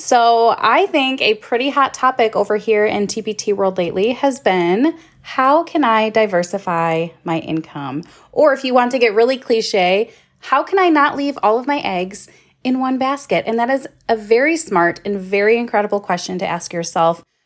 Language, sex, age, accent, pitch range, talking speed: English, female, 20-39, American, 185-255 Hz, 185 wpm